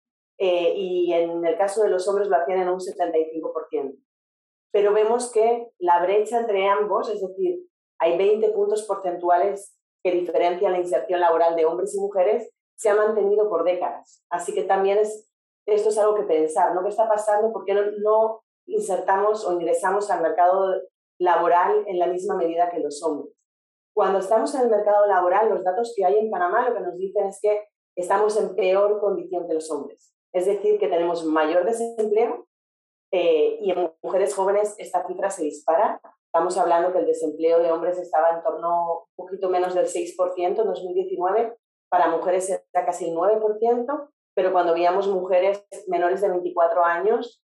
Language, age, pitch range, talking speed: Spanish, 30-49, 175-210 Hz, 175 wpm